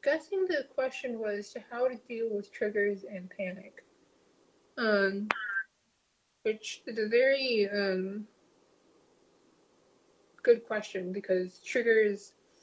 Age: 20-39